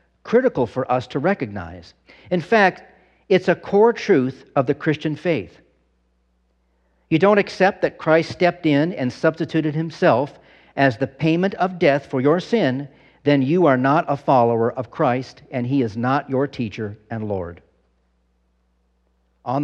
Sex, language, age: male, English, 50-69